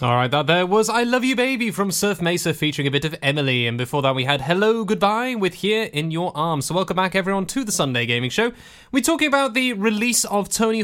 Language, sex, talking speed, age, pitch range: English, male, 245 wpm, 20-39, 140-195 Hz